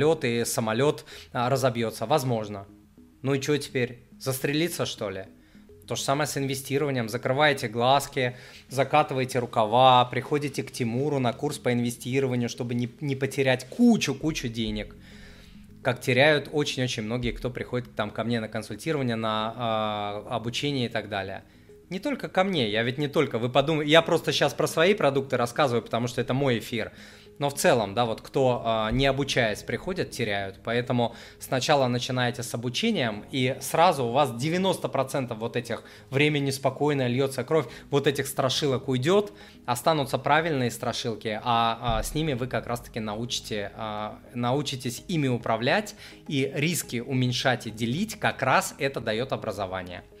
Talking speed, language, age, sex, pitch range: 150 wpm, Russian, 20-39, male, 115-140 Hz